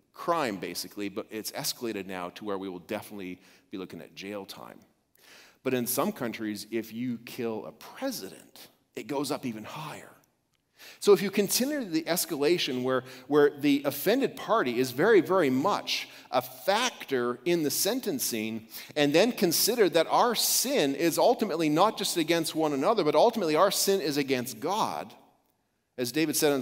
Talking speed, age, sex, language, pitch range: 165 wpm, 40-59, male, English, 120-165 Hz